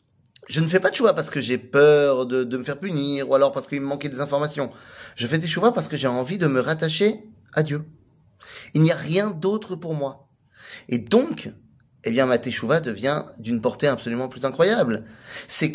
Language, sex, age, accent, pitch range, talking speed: French, male, 30-49, French, 130-195 Hz, 215 wpm